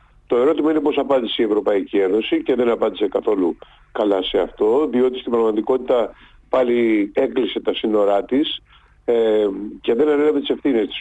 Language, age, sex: Greek, 50-69, male